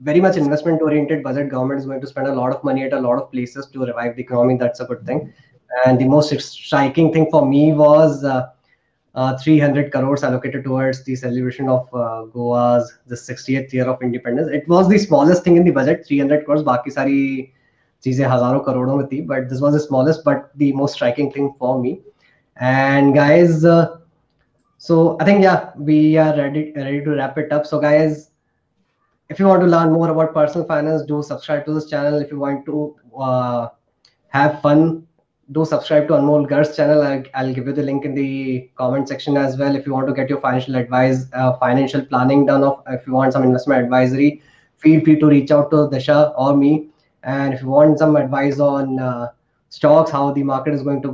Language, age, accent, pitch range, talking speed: Hindi, 20-39, native, 130-150 Hz, 210 wpm